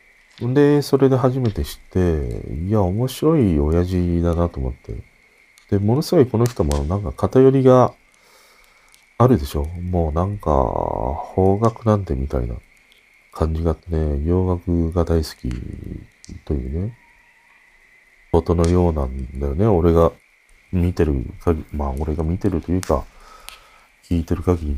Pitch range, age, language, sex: 85-135 Hz, 40-59, Japanese, male